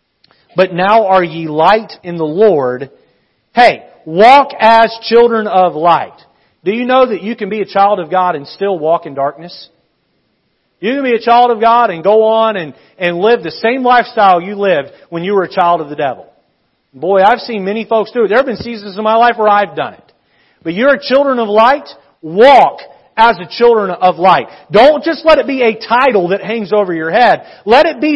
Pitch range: 170-225 Hz